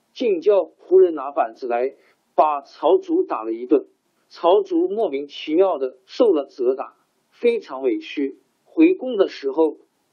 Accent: native